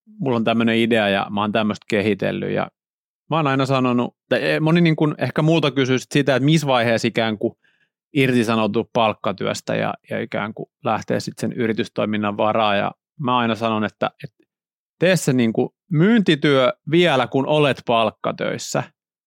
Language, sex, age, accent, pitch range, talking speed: Finnish, male, 30-49, native, 110-140 Hz, 155 wpm